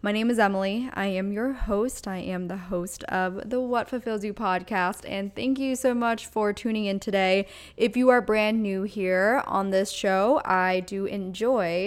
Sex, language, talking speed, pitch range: female, English, 195 wpm, 180-215 Hz